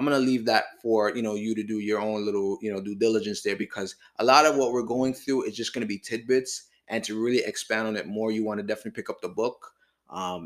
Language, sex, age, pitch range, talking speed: English, male, 20-39, 100-120 Hz, 280 wpm